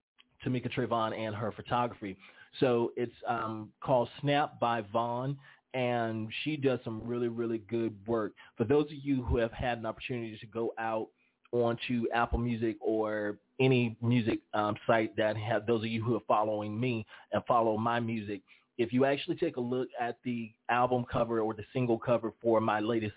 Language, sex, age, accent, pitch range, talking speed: English, male, 30-49, American, 110-125 Hz, 180 wpm